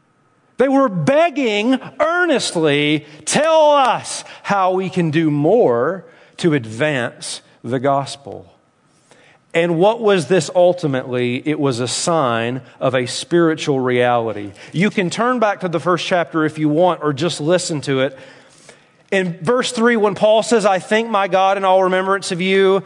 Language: English